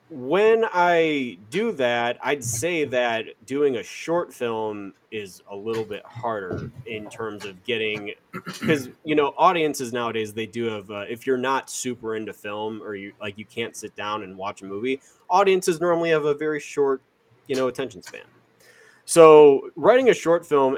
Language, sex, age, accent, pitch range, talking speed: English, male, 30-49, American, 110-155 Hz, 175 wpm